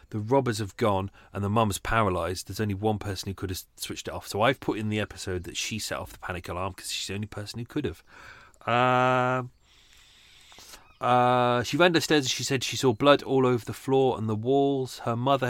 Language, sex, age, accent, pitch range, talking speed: English, male, 40-59, British, 100-125 Hz, 230 wpm